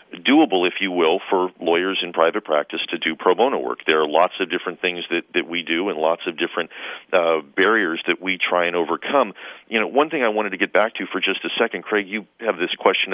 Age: 40-59